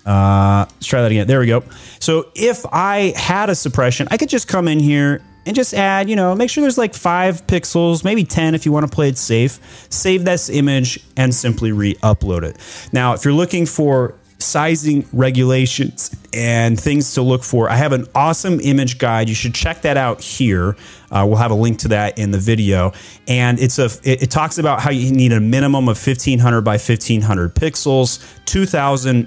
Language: English